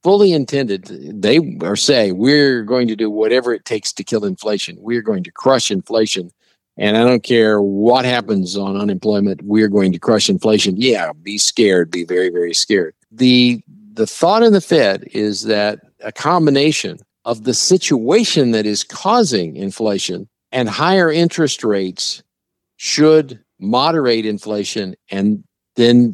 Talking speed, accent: 150 wpm, American